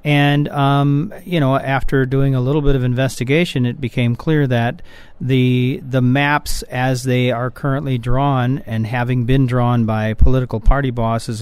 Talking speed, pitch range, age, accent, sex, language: 165 wpm, 120-140 Hz, 40-59, American, male, English